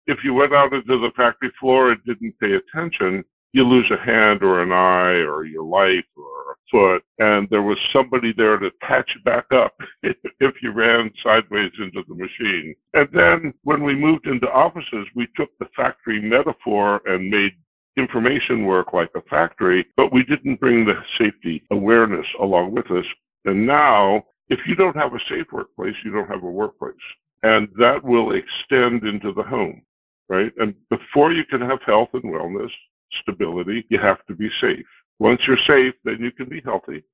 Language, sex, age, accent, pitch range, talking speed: English, female, 60-79, American, 100-135 Hz, 185 wpm